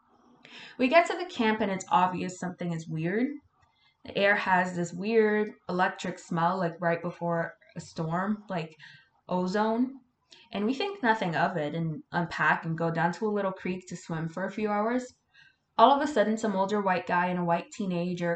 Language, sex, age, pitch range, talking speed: English, female, 20-39, 175-225 Hz, 190 wpm